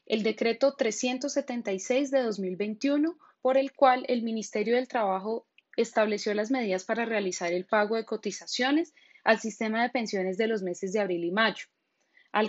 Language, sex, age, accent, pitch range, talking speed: Spanish, female, 10-29, Colombian, 195-245 Hz, 160 wpm